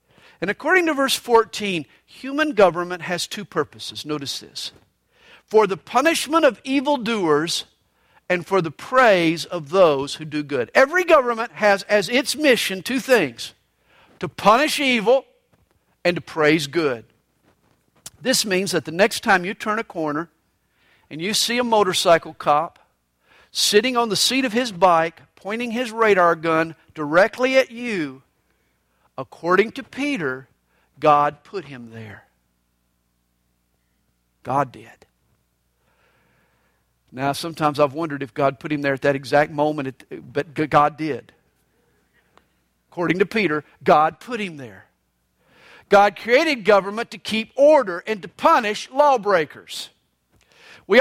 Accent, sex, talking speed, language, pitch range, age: American, male, 135 wpm, English, 145-230 Hz, 50-69